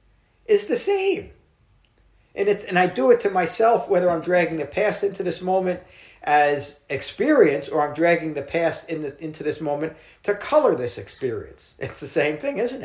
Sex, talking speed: male, 185 wpm